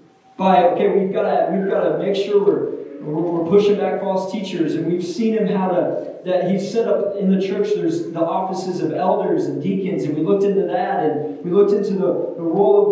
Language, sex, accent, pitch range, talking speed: English, male, American, 165-205 Hz, 220 wpm